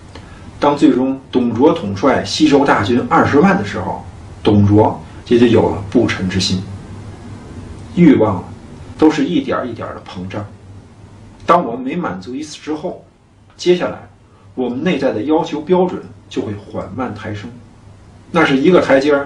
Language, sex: Chinese, male